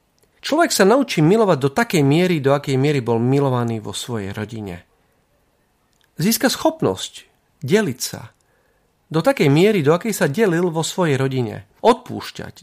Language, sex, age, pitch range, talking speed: Slovak, male, 40-59, 120-185 Hz, 145 wpm